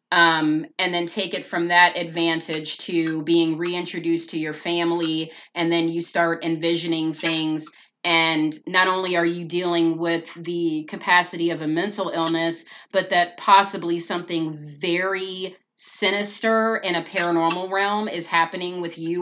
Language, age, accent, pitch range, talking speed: English, 30-49, American, 165-185 Hz, 145 wpm